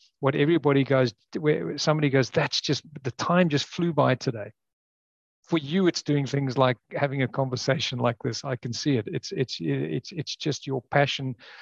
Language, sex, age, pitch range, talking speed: English, male, 50-69, 125-145 Hz, 180 wpm